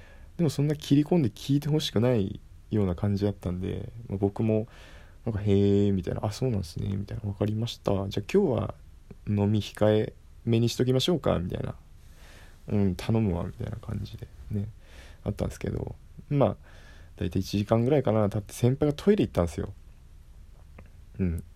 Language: Japanese